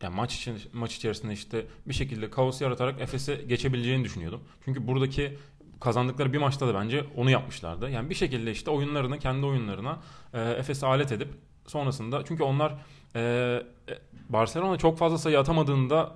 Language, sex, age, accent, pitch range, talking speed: Turkish, male, 30-49, native, 115-160 Hz, 150 wpm